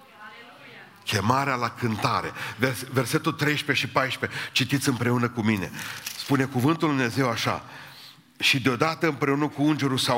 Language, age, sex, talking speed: Romanian, 60-79, male, 130 wpm